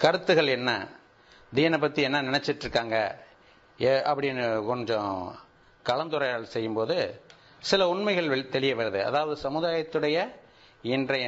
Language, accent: Tamil, native